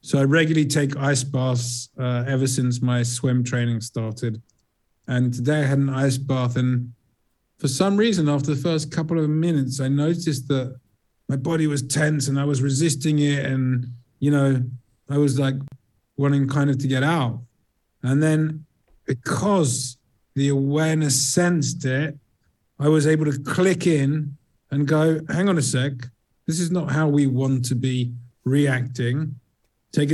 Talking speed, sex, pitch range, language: 165 wpm, male, 125-145 Hz, English